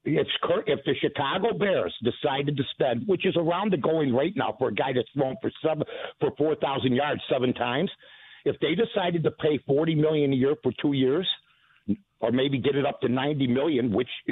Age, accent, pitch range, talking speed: 60-79, American, 130-165 Hz, 205 wpm